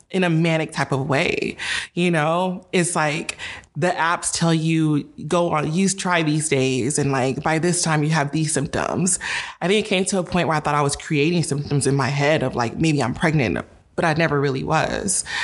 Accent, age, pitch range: American, 20-39, 140-170 Hz